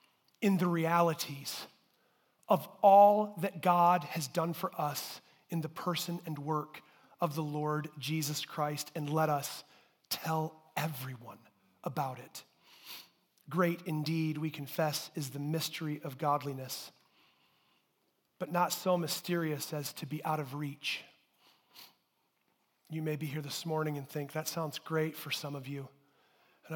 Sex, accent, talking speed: male, American, 140 wpm